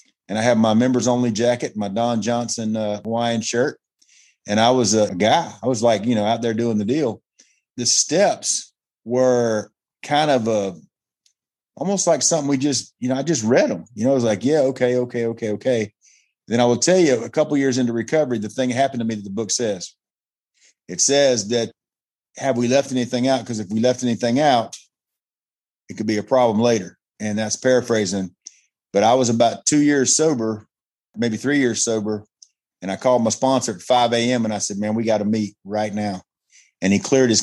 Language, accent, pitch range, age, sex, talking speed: English, American, 105-125 Hz, 40-59, male, 210 wpm